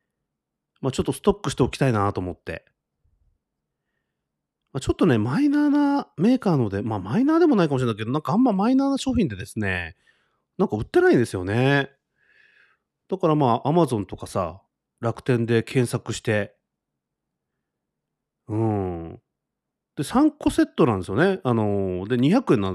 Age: 30-49